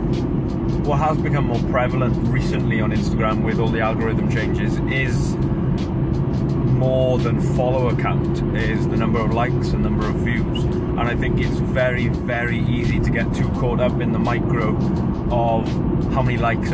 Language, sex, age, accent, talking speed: English, male, 30-49, British, 165 wpm